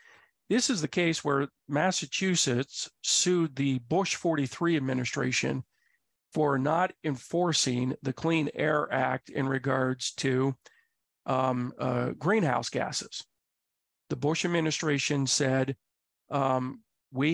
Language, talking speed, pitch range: English, 105 wpm, 130-160 Hz